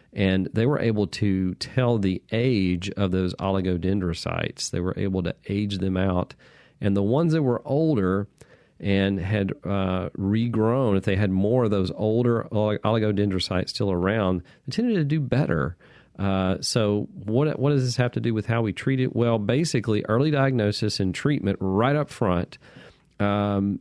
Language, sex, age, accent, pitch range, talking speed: English, male, 40-59, American, 95-120 Hz, 165 wpm